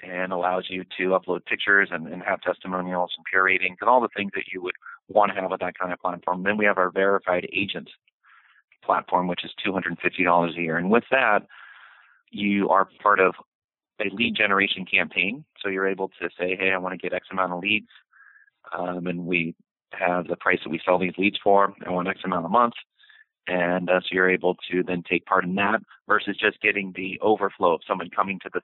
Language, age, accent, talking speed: English, 30-49, American, 220 wpm